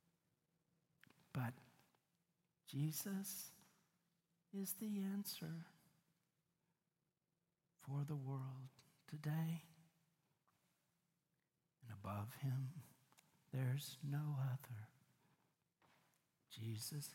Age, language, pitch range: 60-79, English, 140-170 Hz